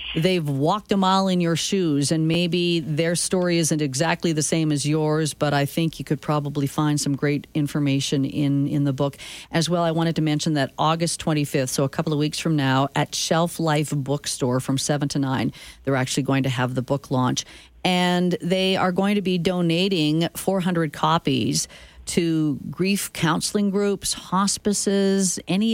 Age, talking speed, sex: 40-59, 180 wpm, female